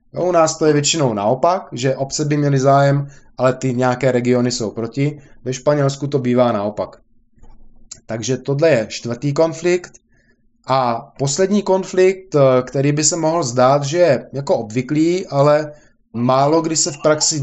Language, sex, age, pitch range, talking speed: Czech, male, 20-39, 125-150 Hz, 155 wpm